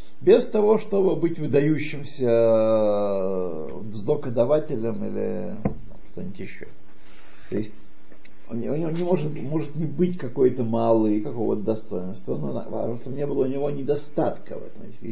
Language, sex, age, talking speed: Russian, male, 50-69, 140 wpm